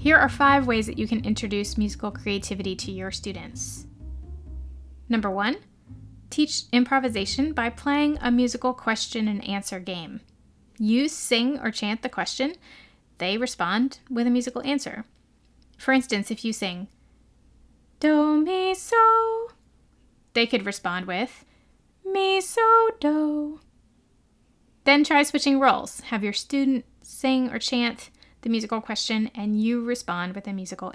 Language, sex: English, female